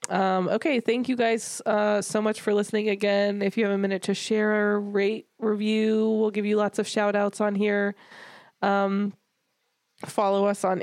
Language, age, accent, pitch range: English, 20-39, American, 190-225 Hz